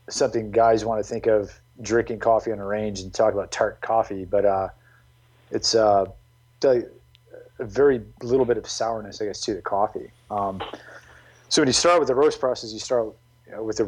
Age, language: 30-49, English